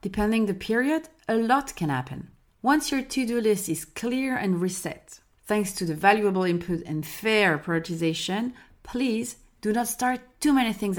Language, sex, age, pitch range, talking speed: French, female, 30-49, 170-230 Hz, 165 wpm